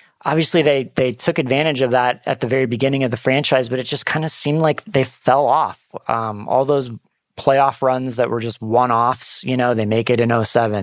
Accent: American